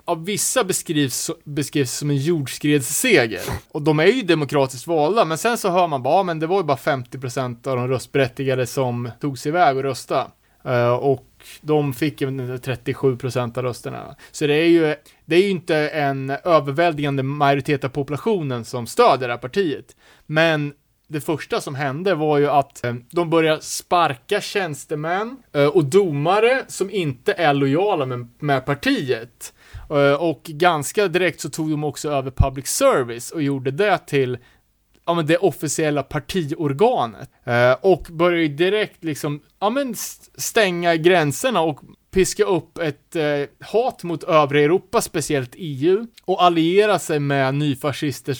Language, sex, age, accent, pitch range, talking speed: Swedish, male, 20-39, Norwegian, 135-175 Hz, 155 wpm